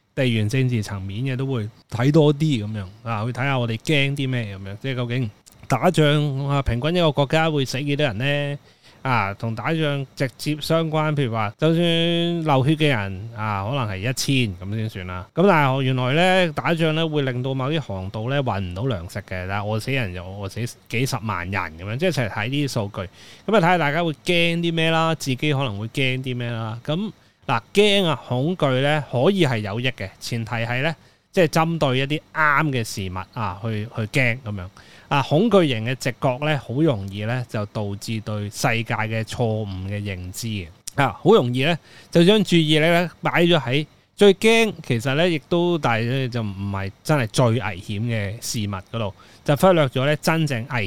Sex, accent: male, native